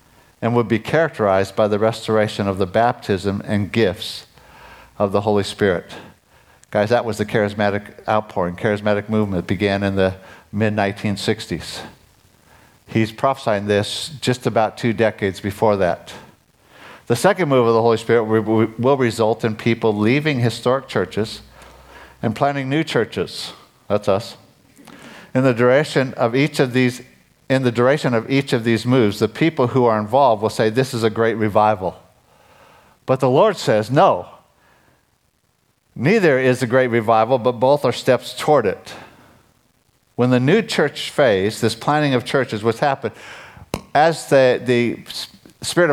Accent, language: American, English